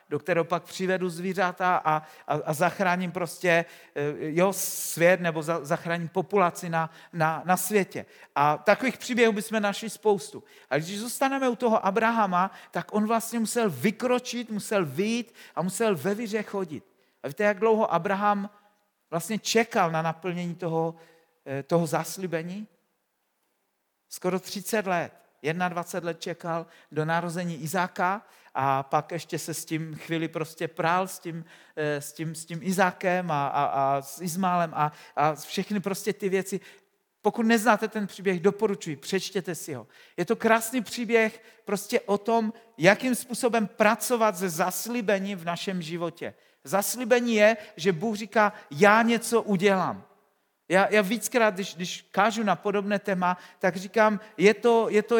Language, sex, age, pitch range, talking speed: Czech, male, 50-69, 170-220 Hz, 150 wpm